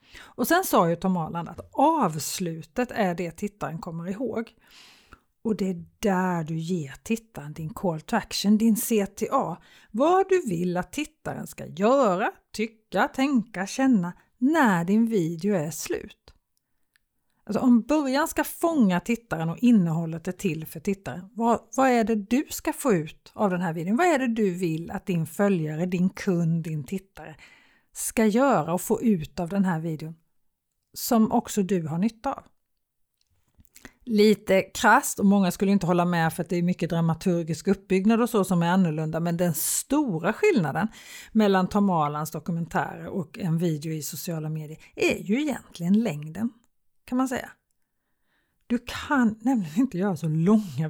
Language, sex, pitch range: Swedish, female, 170-230 Hz